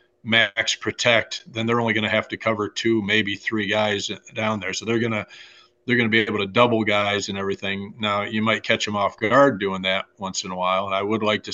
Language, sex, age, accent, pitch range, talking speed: English, male, 40-59, American, 95-110 Hz, 240 wpm